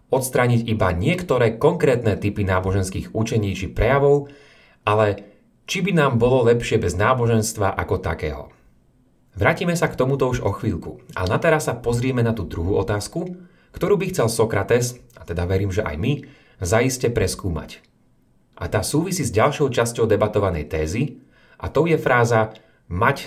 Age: 30-49